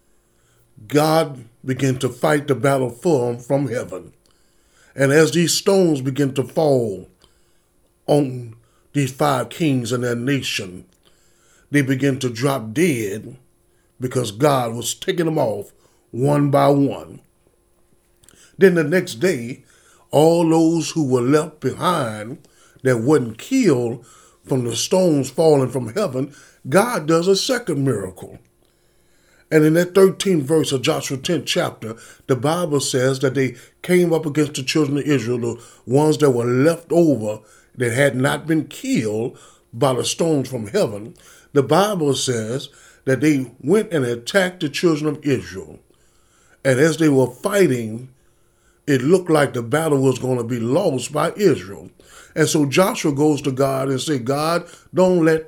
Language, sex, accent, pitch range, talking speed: English, male, American, 125-160 Hz, 150 wpm